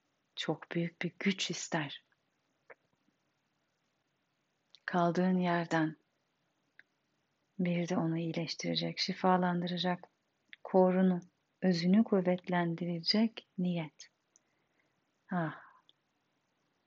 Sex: female